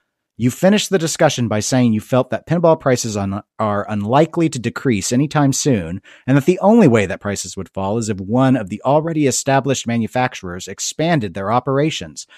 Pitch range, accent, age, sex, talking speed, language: 105-145 Hz, American, 40-59, male, 180 wpm, English